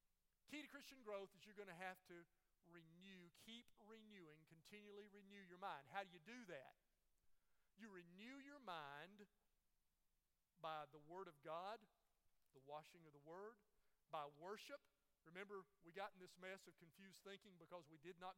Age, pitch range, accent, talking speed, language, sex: 40-59, 170-205 Hz, American, 165 wpm, English, male